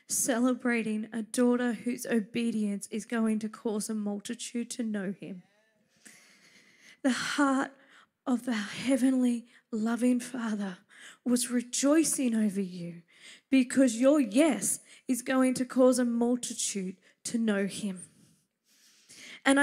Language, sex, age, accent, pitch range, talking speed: English, female, 20-39, Australian, 220-270 Hz, 115 wpm